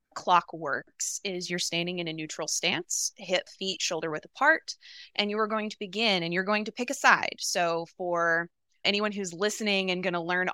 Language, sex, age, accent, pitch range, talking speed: English, female, 20-39, American, 175-220 Hz, 205 wpm